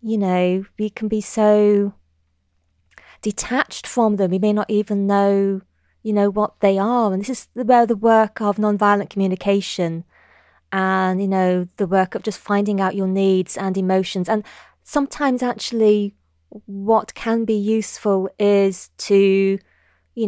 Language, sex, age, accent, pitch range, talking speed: English, female, 20-39, British, 180-220 Hz, 150 wpm